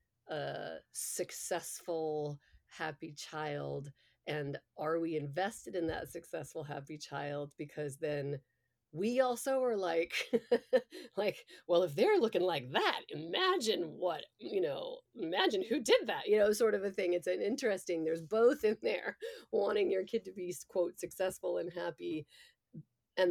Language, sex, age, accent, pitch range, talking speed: English, female, 40-59, American, 145-200 Hz, 145 wpm